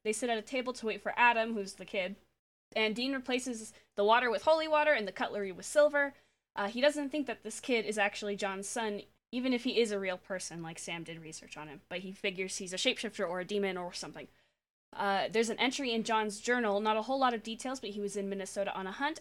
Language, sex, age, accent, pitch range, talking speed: English, female, 20-39, American, 195-250 Hz, 255 wpm